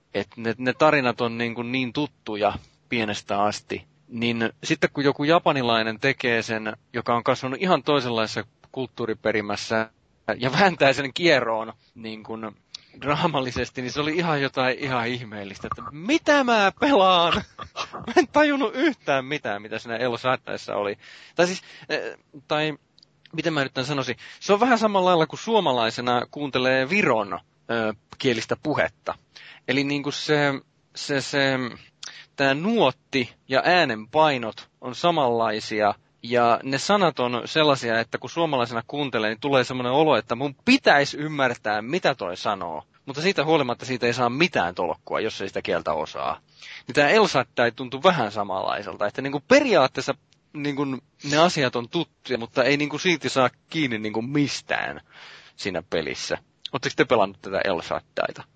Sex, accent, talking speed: male, native, 150 wpm